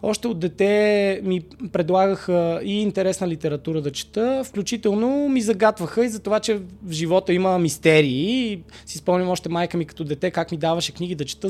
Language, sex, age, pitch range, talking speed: Bulgarian, male, 20-39, 165-220 Hz, 185 wpm